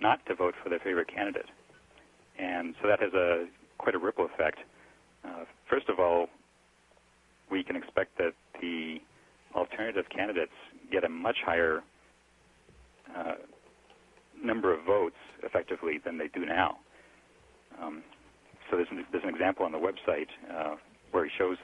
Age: 60-79